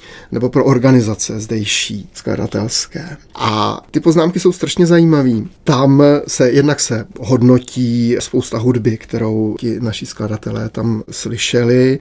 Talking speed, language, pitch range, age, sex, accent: 120 wpm, Czech, 120-145 Hz, 30-49, male, native